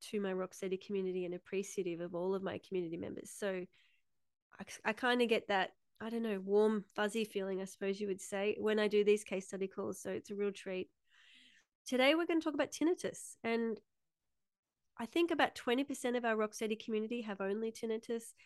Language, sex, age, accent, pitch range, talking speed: English, female, 30-49, Australian, 195-225 Hz, 195 wpm